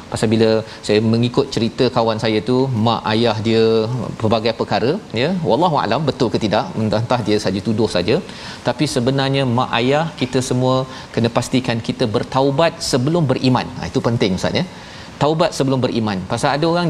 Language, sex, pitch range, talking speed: Malayalam, male, 110-140 Hz, 165 wpm